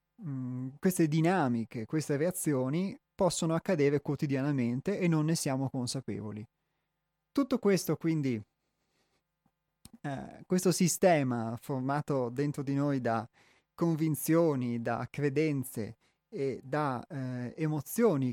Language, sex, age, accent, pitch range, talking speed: Italian, male, 30-49, native, 135-175 Hz, 100 wpm